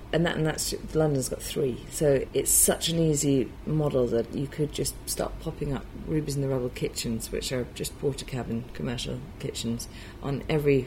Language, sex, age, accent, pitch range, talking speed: English, female, 30-49, British, 130-165 Hz, 190 wpm